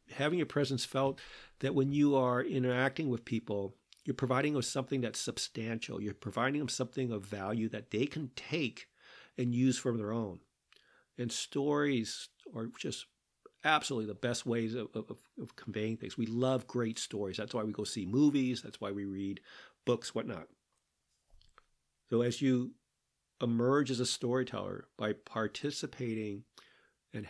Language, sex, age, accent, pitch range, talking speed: English, male, 50-69, American, 110-140 Hz, 155 wpm